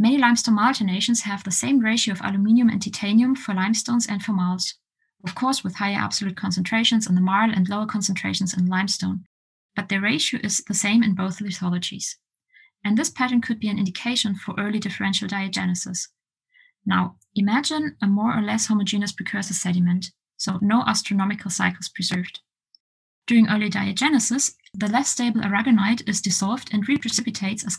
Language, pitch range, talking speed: English, 195-230 Hz, 165 wpm